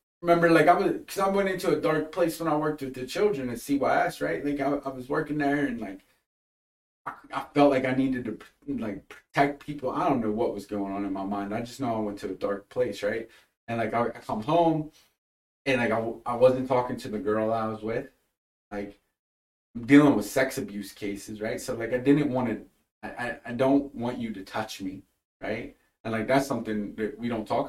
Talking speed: 225 wpm